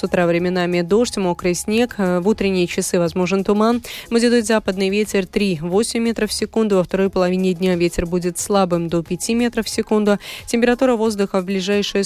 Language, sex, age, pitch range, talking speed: Russian, female, 20-39, 180-230 Hz, 170 wpm